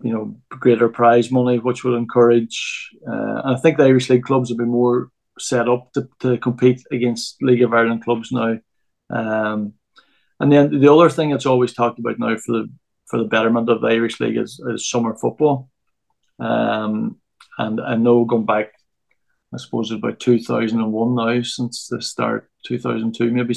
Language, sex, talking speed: English, male, 180 wpm